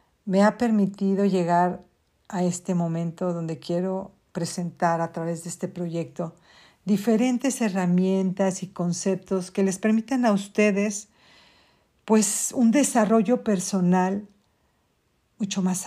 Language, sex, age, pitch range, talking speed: Spanish, female, 50-69, 185-220 Hz, 110 wpm